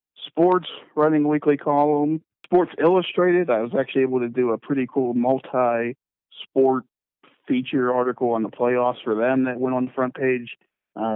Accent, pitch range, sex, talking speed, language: American, 115-140 Hz, male, 165 wpm, English